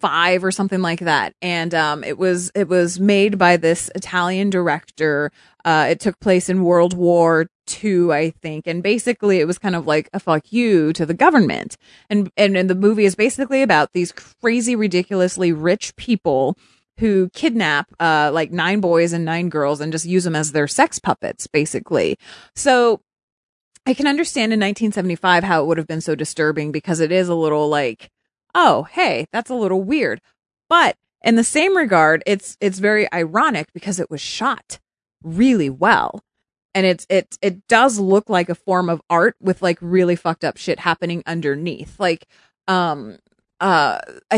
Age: 30-49